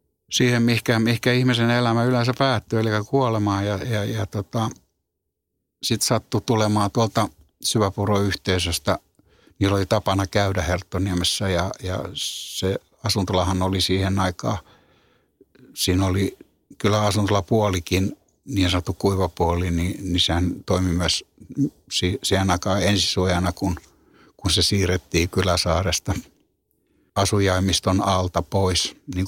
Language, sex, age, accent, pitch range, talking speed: Finnish, male, 60-79, native, 90-105 Hz, 110 wpm